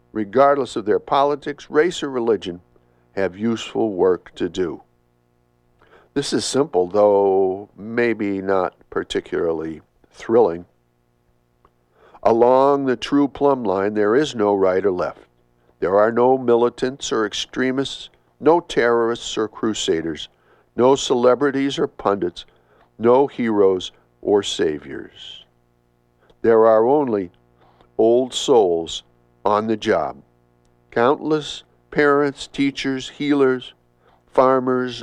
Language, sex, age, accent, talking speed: English, male, 60-79, American, 105 wpm